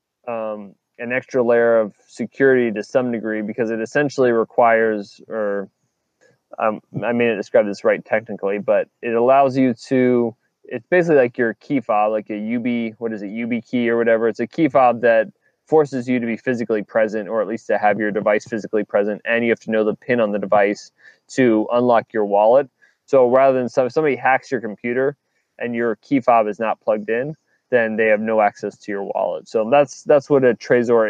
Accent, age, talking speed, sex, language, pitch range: American, 20-39, 205 wpm, male, English, 110-125 Hz